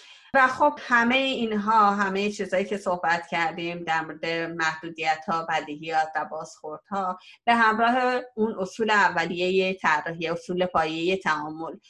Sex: female